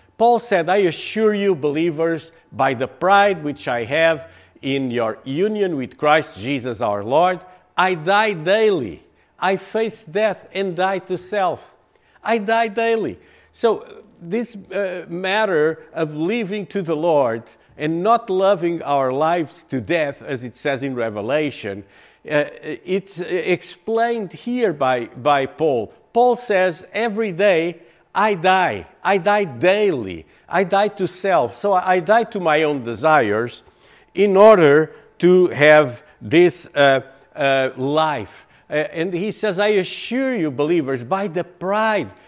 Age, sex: 50-69, male